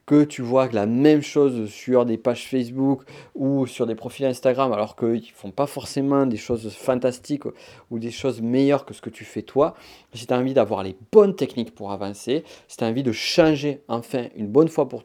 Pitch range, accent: 110-135 Hz, French